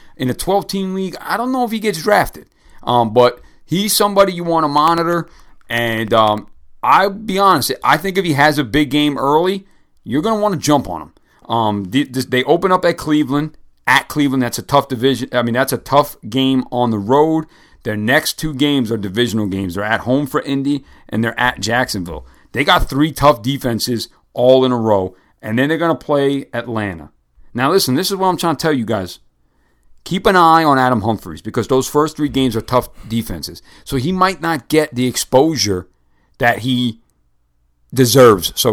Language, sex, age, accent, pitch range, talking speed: English, male, 40-59, American, 115-150 Hz, 205 wpm